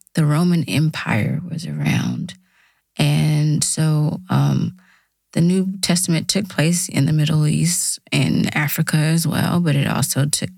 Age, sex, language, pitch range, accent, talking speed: 20-39, female, English, 150-175 Hz, American, 140 wpm